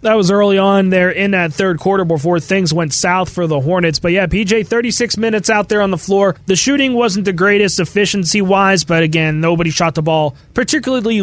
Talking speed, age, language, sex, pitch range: 210 wpm, 20-39, English, male, 165-205 Hz